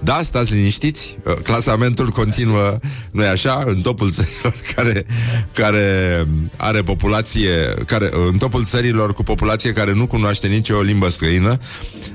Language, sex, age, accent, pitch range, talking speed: Romanian, male, 30-49, native, 95-125 Hz, 130 wpm